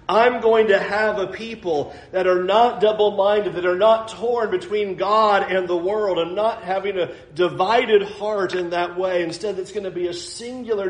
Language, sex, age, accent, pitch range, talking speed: English, male, 40-59, American, 155-210 Hz, 200 wpm